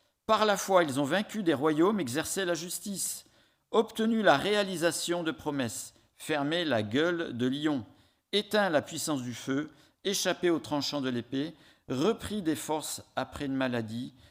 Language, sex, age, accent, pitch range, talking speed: French, male, 50-69, French, 120-180 Hz, 155 wpm